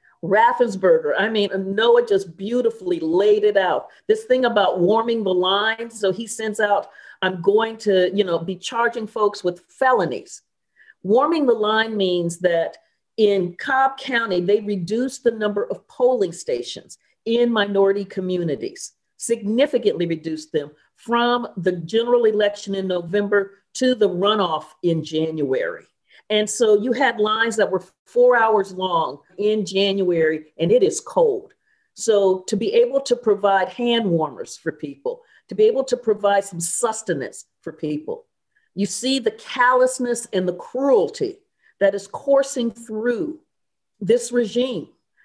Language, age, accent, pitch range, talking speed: English, 50-69, American, 195-255 Hz, 145 wpm